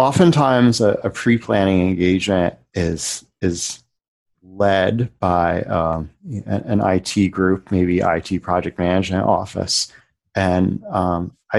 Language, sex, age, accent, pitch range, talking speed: English, male, 30-49, American, 90-105 Hz, 105 wpm